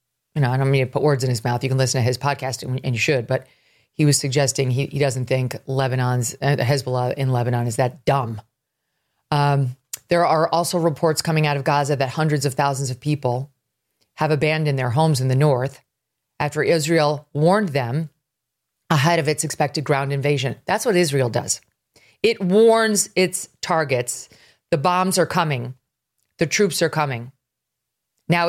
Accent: American